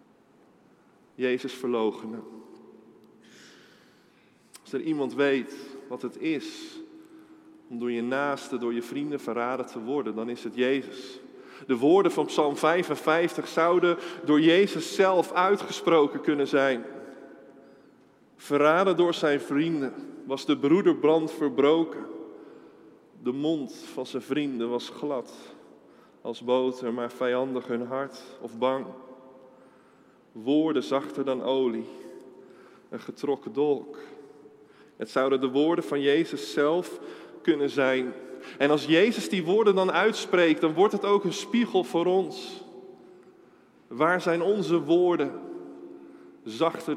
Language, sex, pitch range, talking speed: Dutch, male, 130-175 Hz, 120 wpm